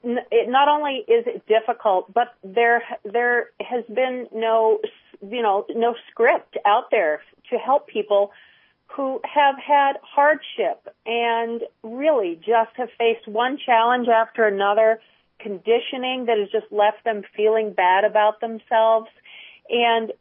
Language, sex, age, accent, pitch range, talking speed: English, female, 40-59, American, 210-245 Hz, 130 wpm